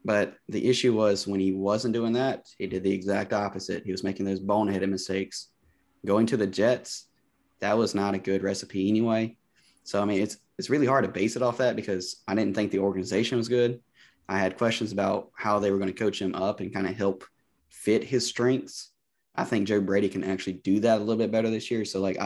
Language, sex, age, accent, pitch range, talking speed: English, male, 20-39, American, 95-110 Hz, 230 wpm